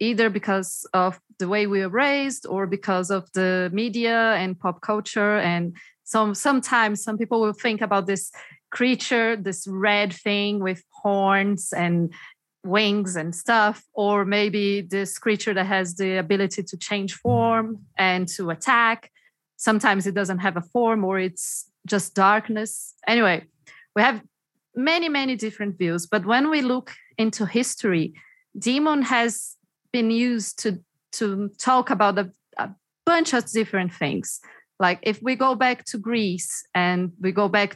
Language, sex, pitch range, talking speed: English, female, 190-235 Hz, 155 wpm